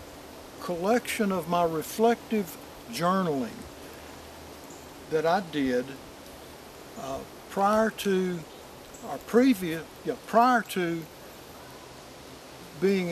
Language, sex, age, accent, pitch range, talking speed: English, male, 60-79, American, 160-225 Hz, 80 wpm